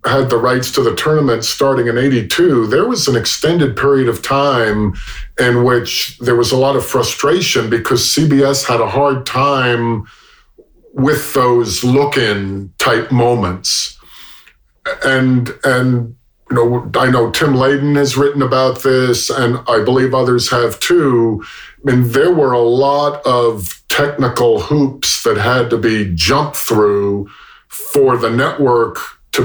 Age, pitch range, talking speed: 50-69, 120-140 Hz, 145 wpm